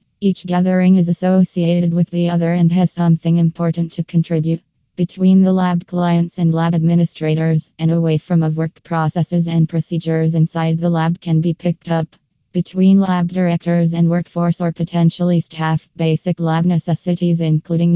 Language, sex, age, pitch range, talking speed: English, female, 20-39, 160-175 Hz, 155 wpm